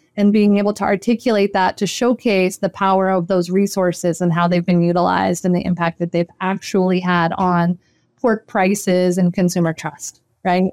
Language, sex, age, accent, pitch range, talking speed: English, female, 30-49, American, 180-205 Hz, 180 wpm